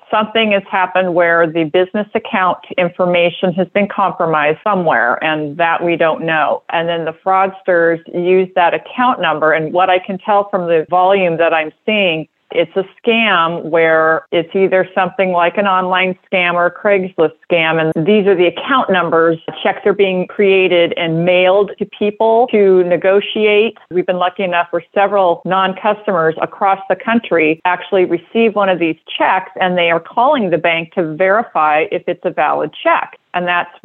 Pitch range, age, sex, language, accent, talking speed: 170-205 Hz, 40-59, female, English, American, 175 wpm